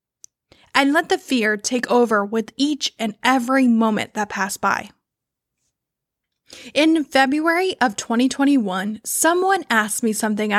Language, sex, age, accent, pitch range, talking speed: English, female, 10-29, American, 225-285 Hz, 125 wpm